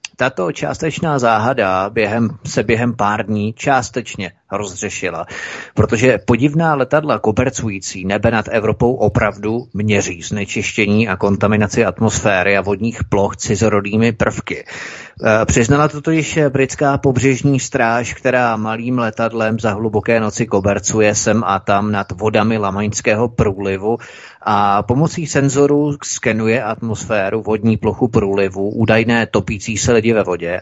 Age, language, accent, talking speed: 30-49, Czech, native, 120 wpm